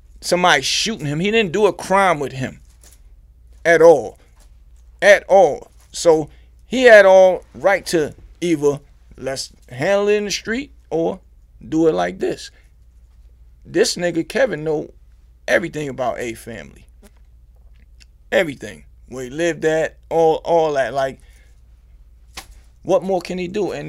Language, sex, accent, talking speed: English, male, American, 135 wpm